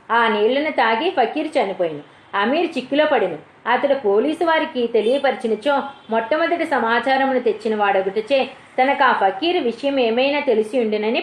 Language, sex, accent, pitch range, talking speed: Telugu, female, native, 210-280 Hz, 110 wpm